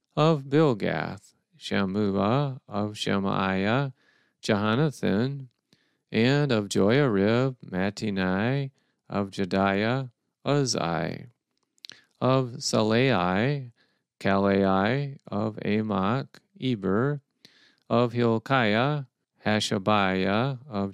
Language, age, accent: English, 40-59, American